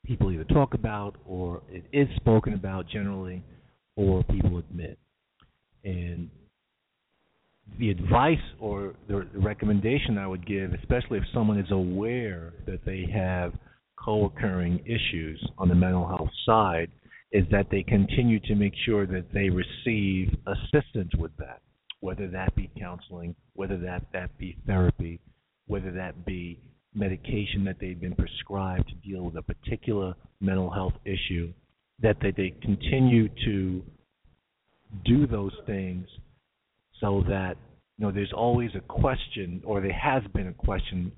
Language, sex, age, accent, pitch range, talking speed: English, male, 50-69, American, 90-105 Hz, 140 wpm